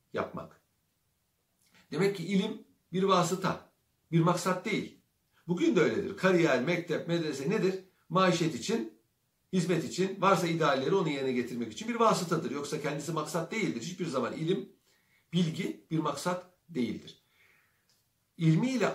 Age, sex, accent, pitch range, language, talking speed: 60-79, male, native, 135-185 Hz, Turkish, 125 wpm